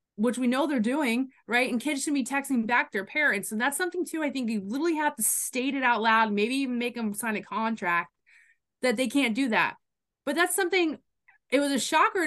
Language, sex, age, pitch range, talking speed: English, female, 20-39, 210-270 Hz, 230 wpm